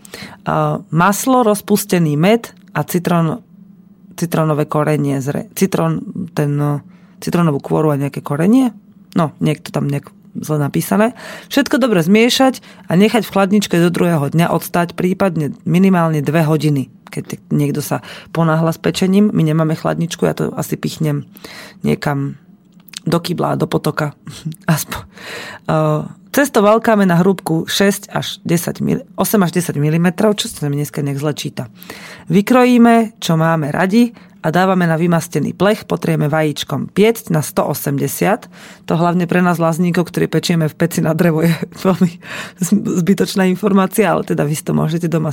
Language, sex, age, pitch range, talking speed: Slovak, female, 30-49, 160-200 Hz, 145 wpm